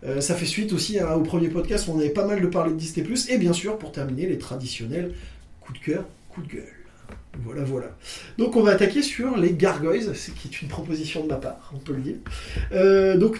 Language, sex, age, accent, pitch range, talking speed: French, male, 20-39, French, 155-205 Hz, 240 wpm